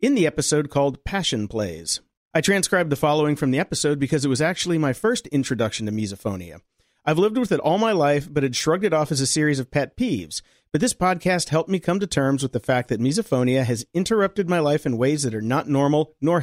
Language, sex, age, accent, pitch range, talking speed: English, male, 40-59, American, 125-175 Hz, 235 wpm